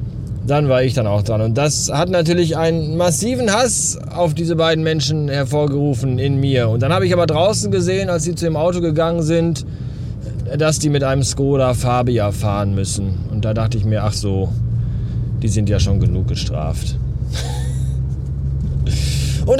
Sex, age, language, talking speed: male, 20-39, German, 170 wpm